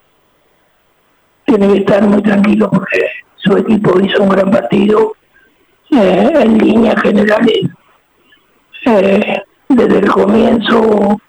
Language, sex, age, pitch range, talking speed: Spanish, male, 50-69, 200-245 Hz, 105 wpm